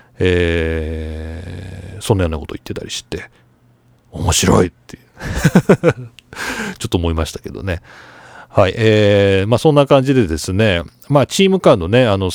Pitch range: 95-155 Hz